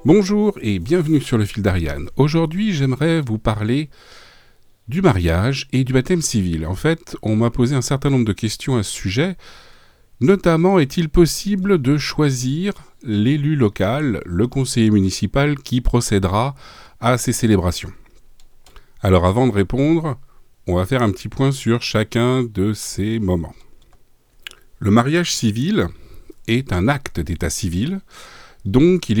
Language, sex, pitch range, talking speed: French, male, 105-145 Hz, 145 wpm